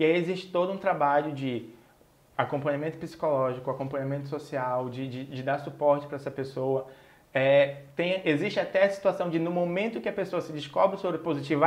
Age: 20-39